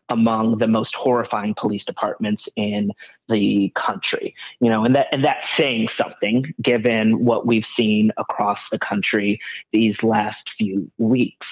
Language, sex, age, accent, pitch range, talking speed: English, male, 30-49, American, 115-125 Hz, 145 wpm